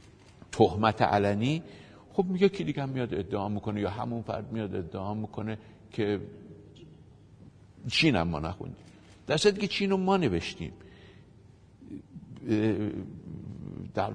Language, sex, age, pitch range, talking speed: Persian, male, 60-79, 105-145 Hz, 115 wpm